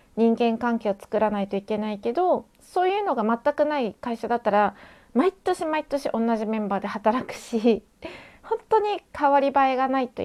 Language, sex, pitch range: Japanese, female, 215-280 Hz